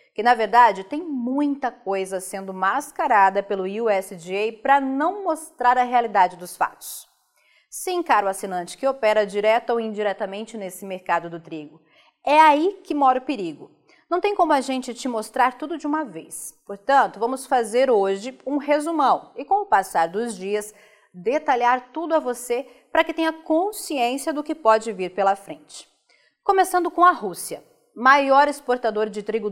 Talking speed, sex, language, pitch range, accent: 165 wpm, female, Portuguese, 205-310 Hz, Brazilian